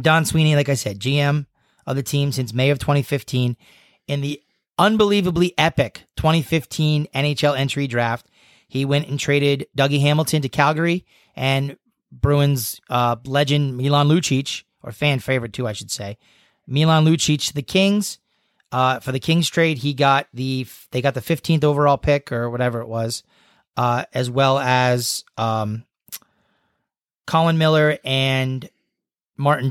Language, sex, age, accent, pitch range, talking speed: English, male, 30-49, American, 125-155 Hz, 150 wpm